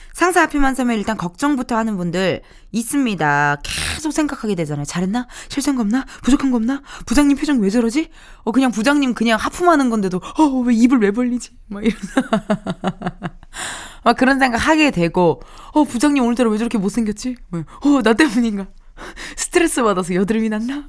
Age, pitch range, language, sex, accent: 20-39, 190-275 Hz, Korean, female, native